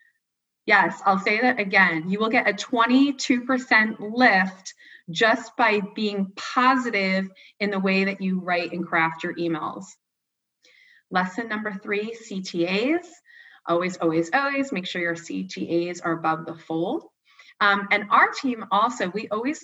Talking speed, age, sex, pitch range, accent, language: 145 wpm, 20-39, female, 180-250 Hz, American, English